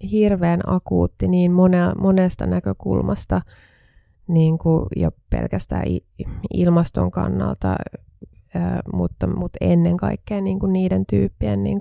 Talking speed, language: 90 wpm, Finnish